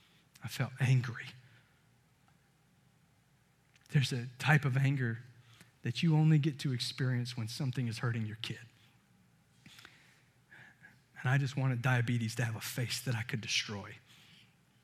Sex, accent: male, American